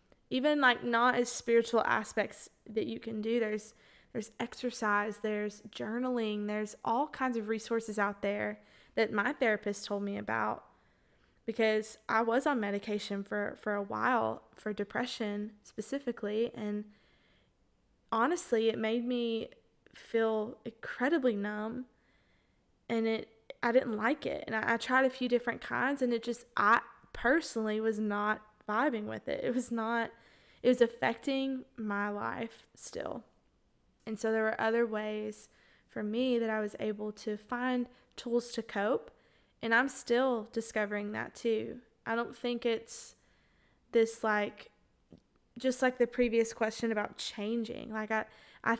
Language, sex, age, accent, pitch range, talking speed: English, female, 20-39, American, 215-240 Hz, 150 wpm